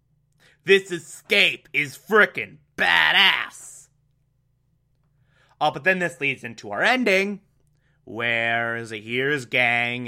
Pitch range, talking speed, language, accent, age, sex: 130-170 Hz, 95 wpm, English, American, 30-49, male